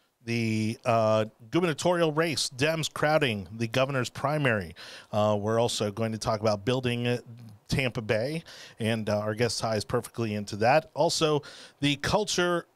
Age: 30-49